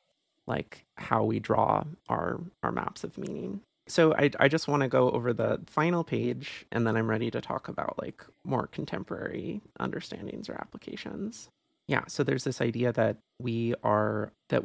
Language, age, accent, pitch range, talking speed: English, 30-49, American, 110-125 Hz, 170 wpm